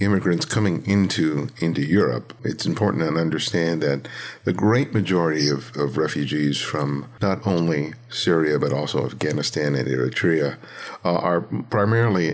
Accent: American